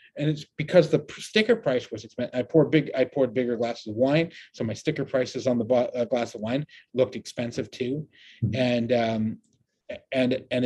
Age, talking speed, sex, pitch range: 30-49, 185 wpm, male, 120-145 Hz